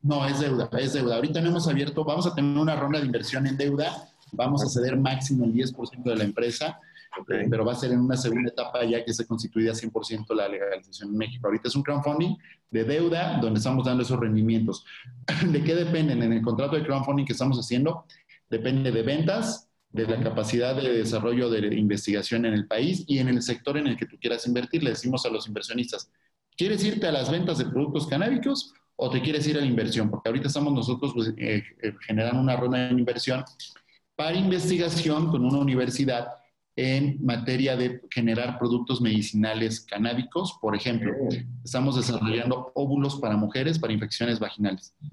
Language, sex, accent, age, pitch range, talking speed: Spanish, male, Mexican, 30-49, 115-145 Hz, 190 wpm